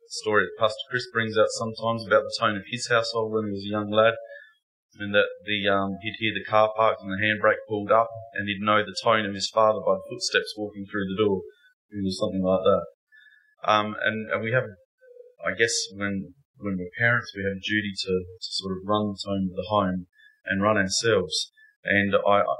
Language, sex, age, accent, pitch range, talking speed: English, male, 20-39, Australian, 95-135 Hz, 215 wpm